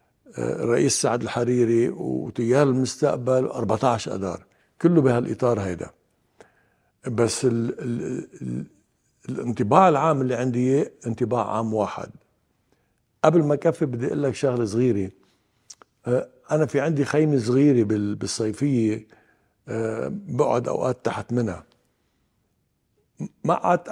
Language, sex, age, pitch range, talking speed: English, male, 60-79, 115-140 Hz, 95 wpm